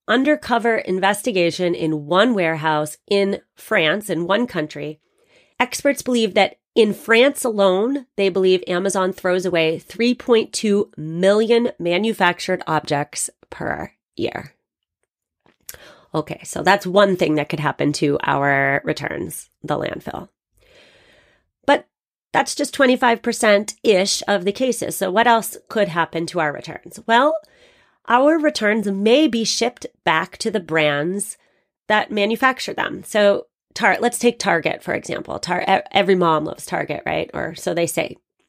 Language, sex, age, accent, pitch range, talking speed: English, female, 30-49, American, 175-230 Hz, 130 wpm